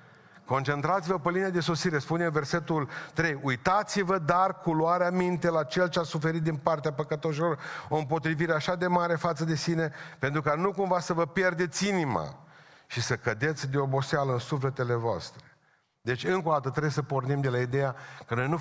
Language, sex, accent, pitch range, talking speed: Romanian, male, native, 140-170 Hz, 185 wpm